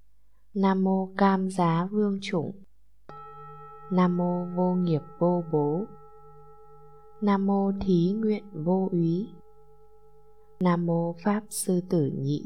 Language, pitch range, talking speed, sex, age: Vietnamese, 150-200 Hz, 115 wpm, female, 20-39